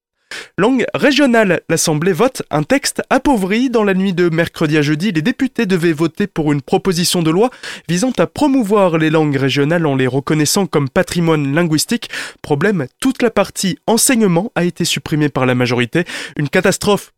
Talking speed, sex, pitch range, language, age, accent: 170 wpm, male, 150-220 Hz, French, 20-39, French